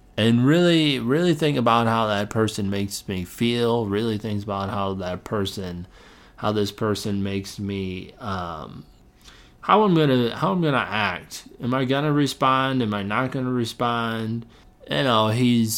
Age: 30-49